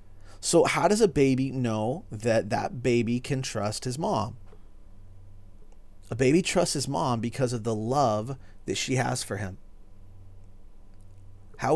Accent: American